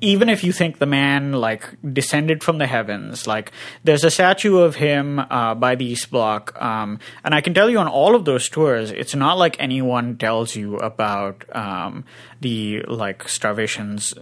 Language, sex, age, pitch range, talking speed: English, male, 20-39, 120-165 Hz, 185 wpm